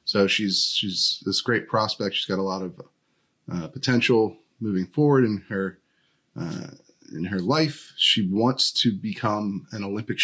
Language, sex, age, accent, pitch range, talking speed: English, male, 30-49, American, 100-130 Hz, 160 wpm